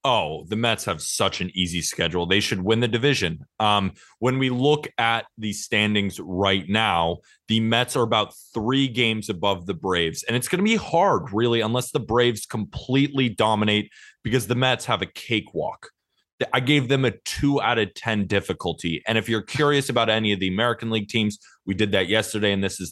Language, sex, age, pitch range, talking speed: English, male, 20-39, 100-120 Hz, 200 wpm